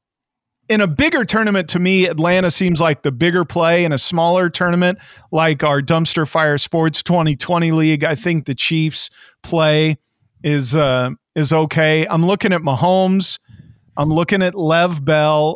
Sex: male